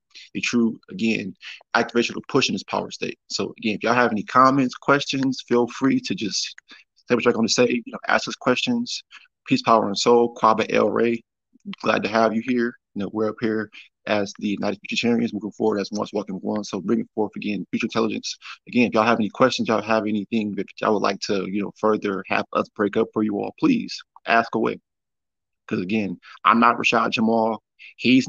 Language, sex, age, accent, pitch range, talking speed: English, male, 20-39, American, 105-120 Hz, 210 wpm